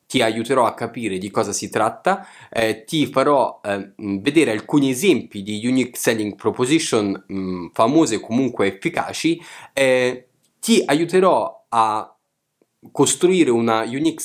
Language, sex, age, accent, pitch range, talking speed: Italian, male, 20-39, native, 110-150 Hz, 125 wpm